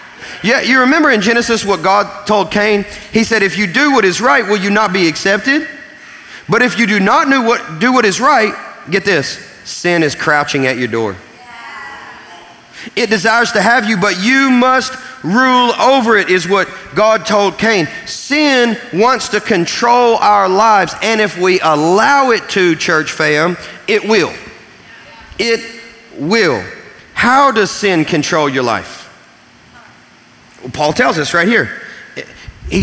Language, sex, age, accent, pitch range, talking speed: English, male, 40-59, American, 180-240 Hz, 155 wpm